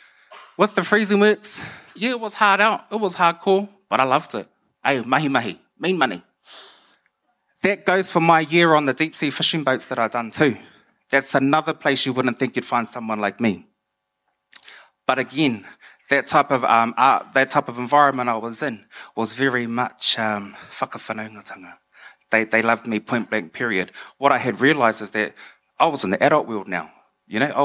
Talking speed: 190 wpm